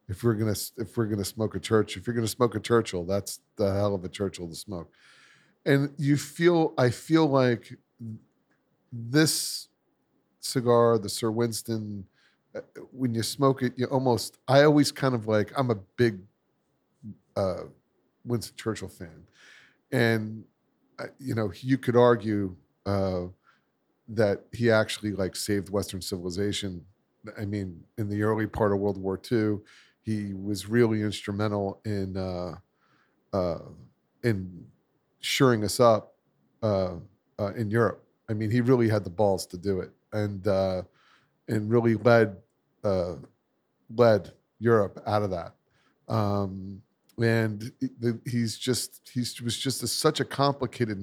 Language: English